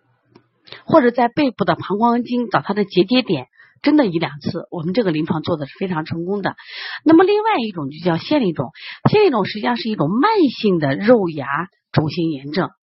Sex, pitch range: female, 150-225 Hz